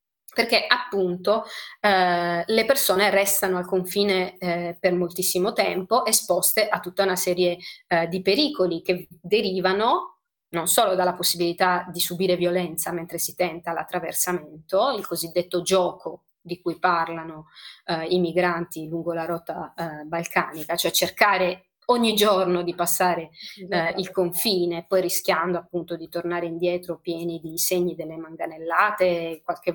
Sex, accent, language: female, native, Italian